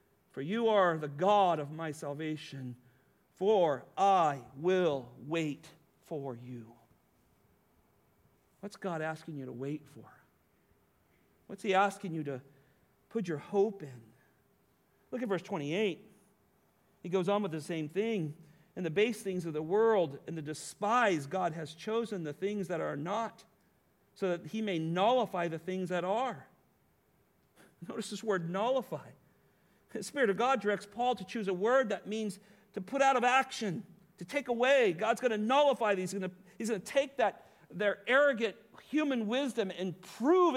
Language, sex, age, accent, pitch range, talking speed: English, male, 50-69, American, 150-215 Hz, 160 wpm